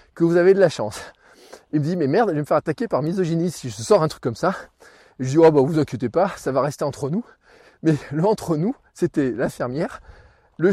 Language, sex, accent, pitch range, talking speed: French, male, French, 140-200 Hz, 240 wpm